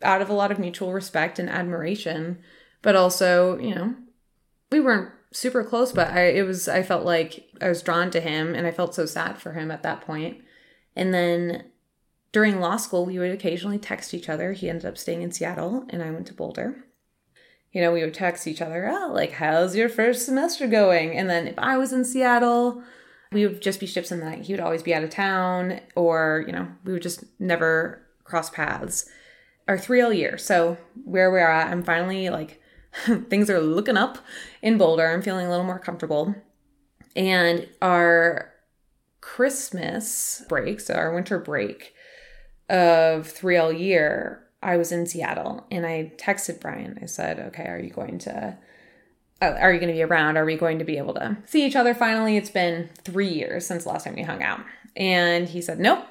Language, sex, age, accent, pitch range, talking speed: English, female, 20-39, American, 170-215 Hz, 200 wpm